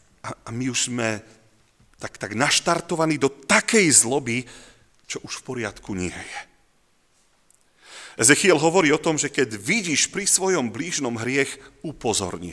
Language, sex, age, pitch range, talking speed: Slovak, male, 40-59, 115-165 Hz, 135 wpm